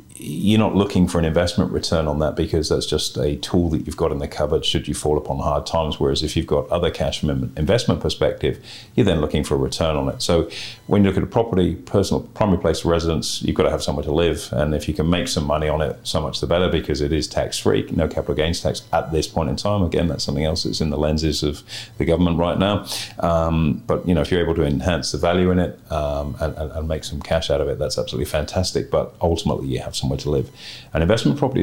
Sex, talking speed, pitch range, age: male, 265 wpm, 75-90 Hz, 40-59